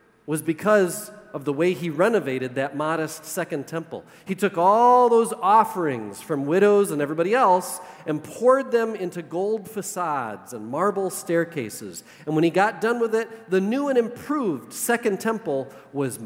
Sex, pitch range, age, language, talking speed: male, 145-195 Hz, 40-59, English, 160 wpm